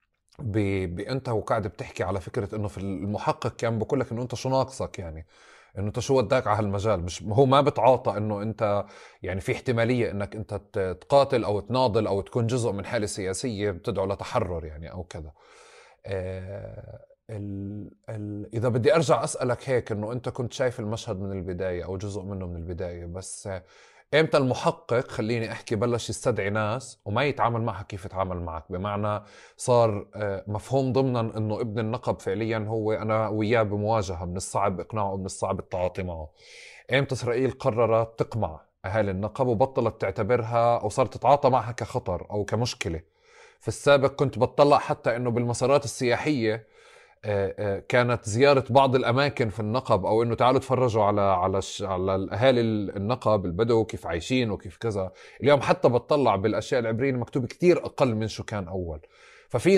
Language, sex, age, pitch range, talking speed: Arabic, male, 30-49, 100-130 Hz, 160 wpm